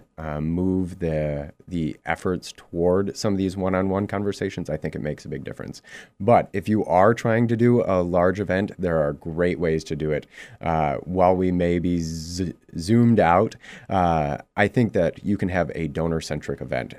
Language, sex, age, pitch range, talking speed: English, male, 30-49, 80-95 Hz, 190 wpm